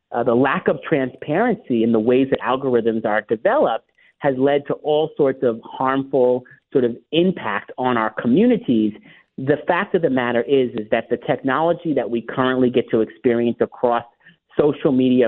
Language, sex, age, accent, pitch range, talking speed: English, male, 40-59, American, 120-145 Hz, 175 wpm